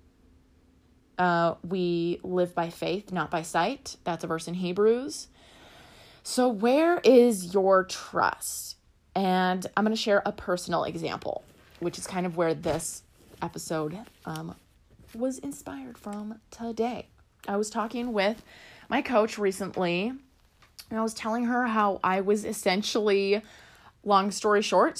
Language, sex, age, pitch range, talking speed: English, female, 20-39, 175-225 Hz, 135 wpm